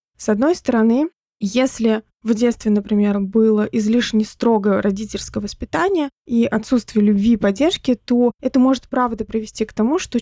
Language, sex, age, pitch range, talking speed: Russian, female, 20-39, 210-245 Hz, 145 wpm